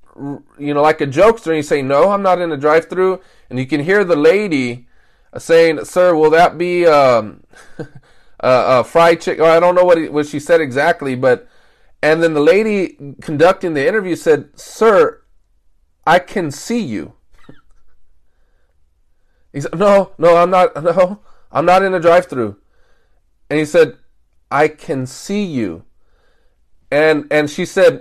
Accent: American